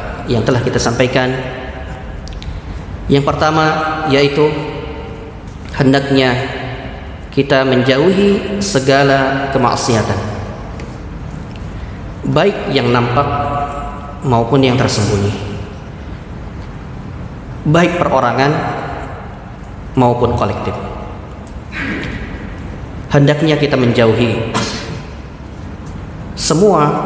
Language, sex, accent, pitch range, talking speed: Indonesian, male, native, 105-150 Hz, 60 wpm